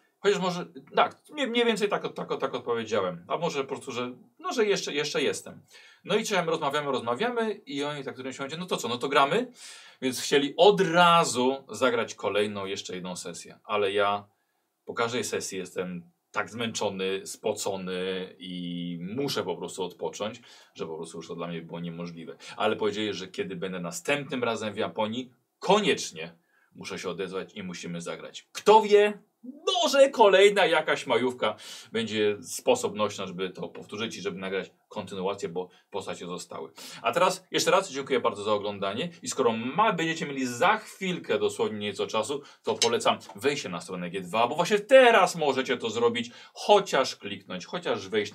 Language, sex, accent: Polish, male, native